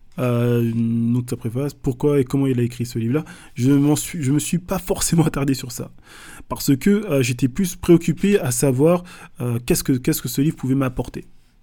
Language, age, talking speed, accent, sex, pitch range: French, 20-39, 200 wpm, French, male, 120-155 Hz